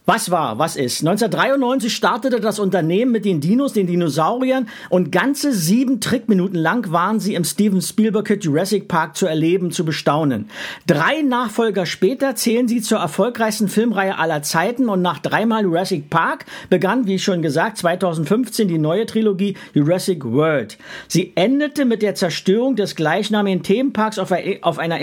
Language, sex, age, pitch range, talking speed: German, male, 50-69, 170-225 Hz, 155 wpm